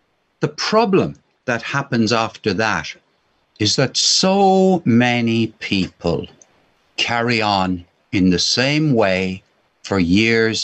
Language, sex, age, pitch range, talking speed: English, male, 60-79, 105-155 Hz, 105 wpm